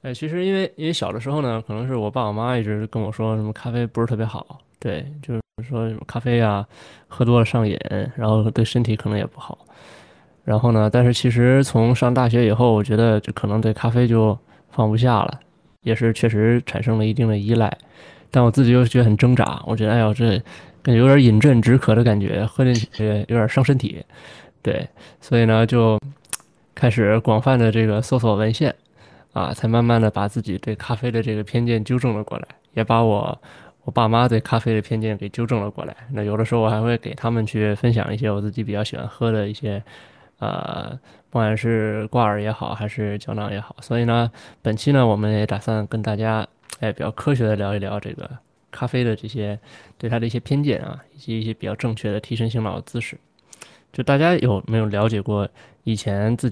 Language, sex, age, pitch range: Chinese, male, 20-39, 105-120 Hz